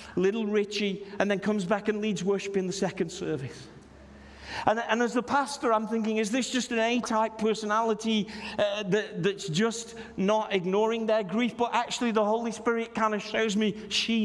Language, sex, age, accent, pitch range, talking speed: English, male, 40-59, British, 160-220 Hz, 180 wpm